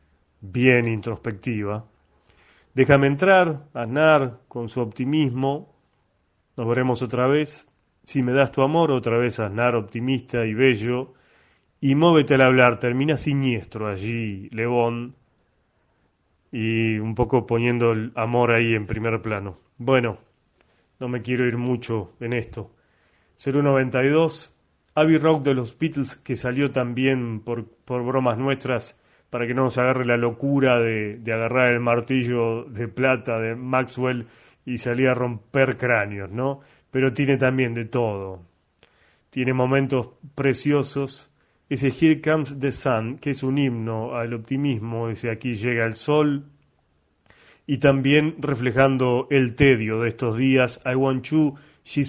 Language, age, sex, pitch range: Spanish, 30-49, male, 115-135 Hz